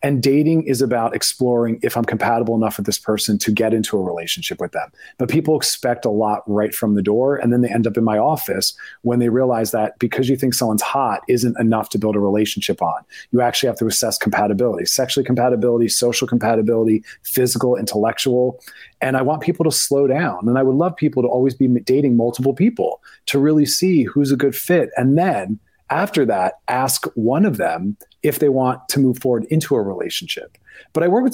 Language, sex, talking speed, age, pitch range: English, male, 210 wpm, 30-49, 115-140 Hz